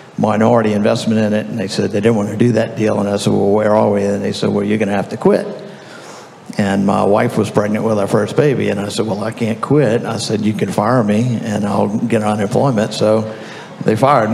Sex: male